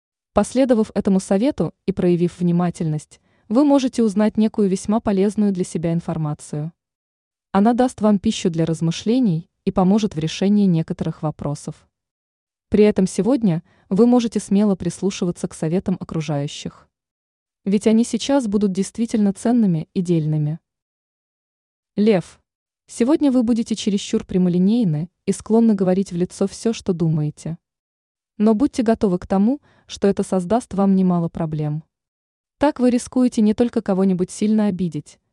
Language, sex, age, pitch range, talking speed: Russian, female, 20-39, 170-220 Hz, 130 wpm